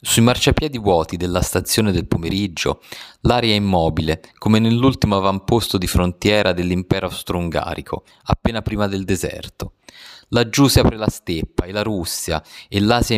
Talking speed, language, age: 140 wpm, Italian, 30-49